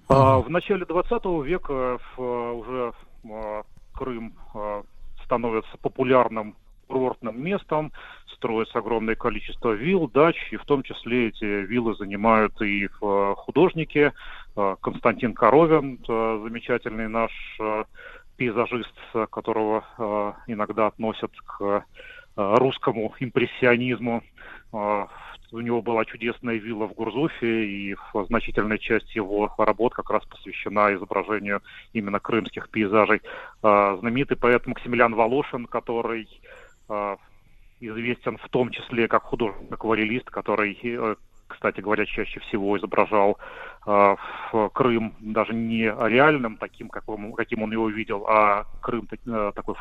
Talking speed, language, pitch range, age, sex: 100 wpm, Russian, 105-125 Hz, 30-49, male